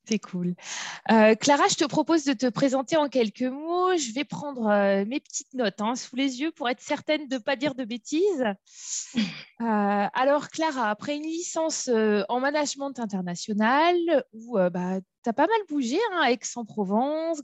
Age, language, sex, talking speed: 20-39, French, female, 180 wpm